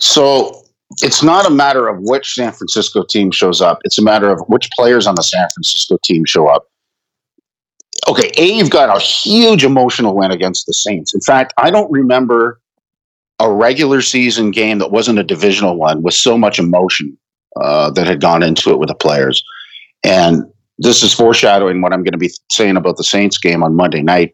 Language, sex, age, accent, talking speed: English, male, 50-69, American, 195 wpm